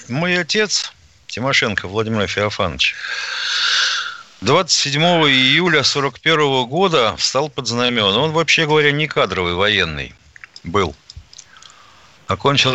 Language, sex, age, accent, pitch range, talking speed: Russian, male, 50-69, native, 105-160 Hz, 95 wpm